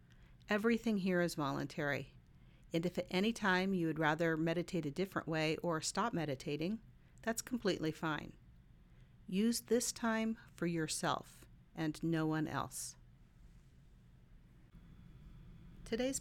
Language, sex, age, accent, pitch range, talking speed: English, female, 50-69, American, 145-185 Hz, 120 wpm